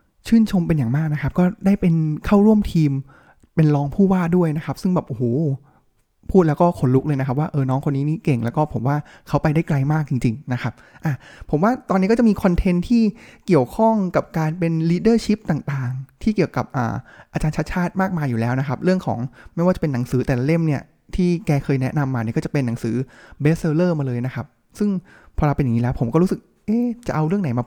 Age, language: 20-39, Thai